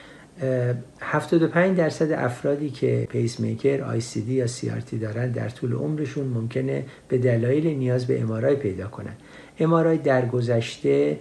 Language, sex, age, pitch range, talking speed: Persian, male, 60-79, 115-140 Hz, 125 wpm